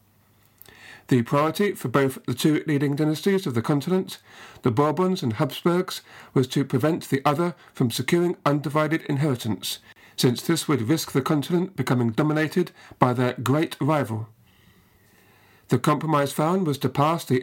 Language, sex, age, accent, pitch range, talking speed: English, male, 50-69, British, 125-160 Hz, 150 wpm